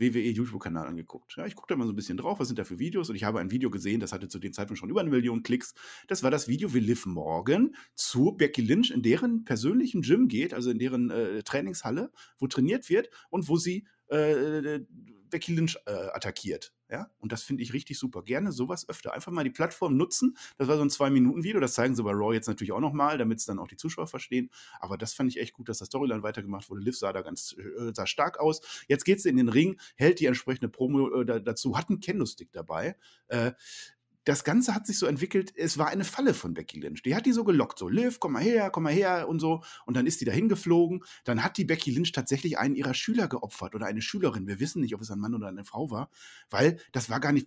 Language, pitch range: German, 115-170 Hz